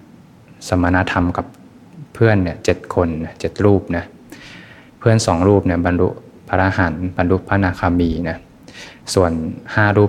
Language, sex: Thai, male